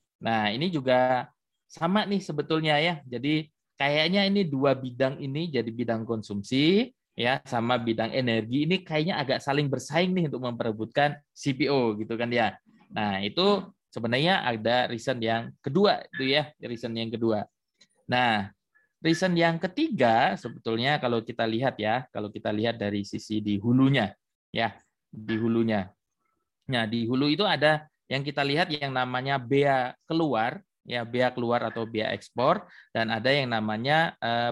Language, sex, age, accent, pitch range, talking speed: Indonesian, male, 20-39, native, 115-155 Hz, 150 wpm